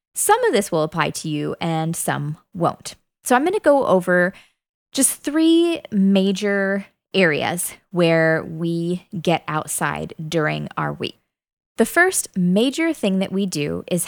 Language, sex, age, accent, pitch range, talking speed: English, female, 20-39, American, 165-235 Hz, 145 wpm